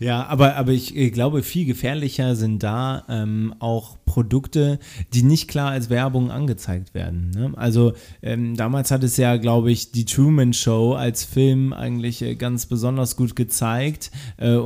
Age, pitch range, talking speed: 30-49, 115-135 Hz, 165 wpm